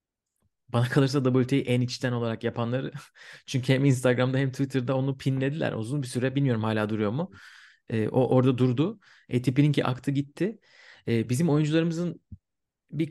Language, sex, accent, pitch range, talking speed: Turkish, male, native, 110-135 Hz, 150 wpm